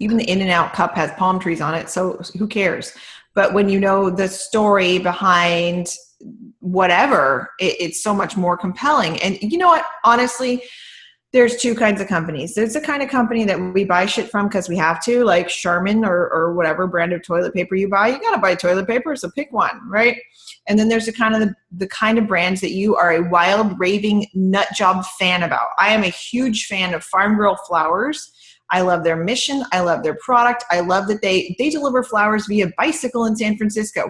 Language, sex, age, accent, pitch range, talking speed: English, female, 30-49, American, 180-235 Hz, 210 wpm